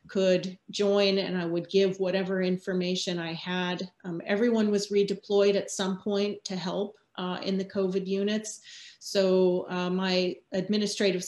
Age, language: 30-49, English